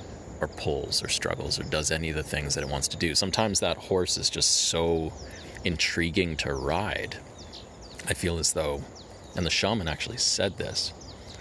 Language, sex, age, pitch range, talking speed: English, male, 30-49, 75-95 Hz, 180 wpm